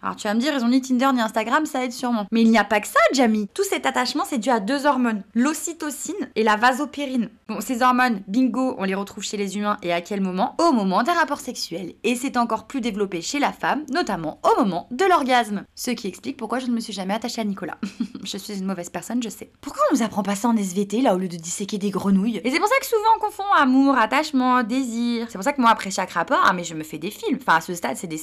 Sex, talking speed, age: female, 285 wpm, 20-39